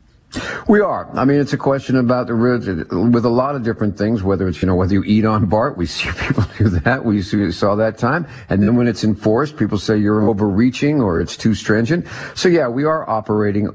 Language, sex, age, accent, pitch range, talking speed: English, male, 50-69, American, 95-125 Hz, 235 wpm